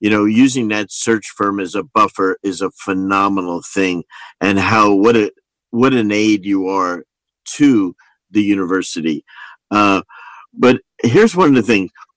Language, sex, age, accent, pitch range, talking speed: English, male, 50-69, American, 115-145 Hz, 155 wpm